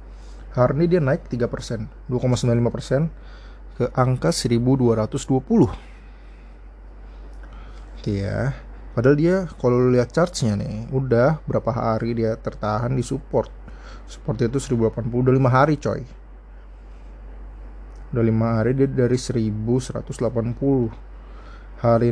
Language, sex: Indonesian, male